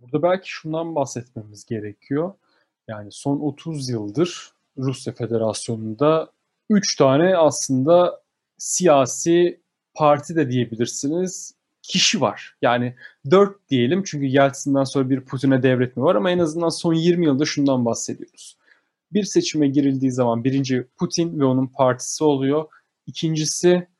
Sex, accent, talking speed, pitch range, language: male, native, 125 wpm, 125-170 Hz, Turkish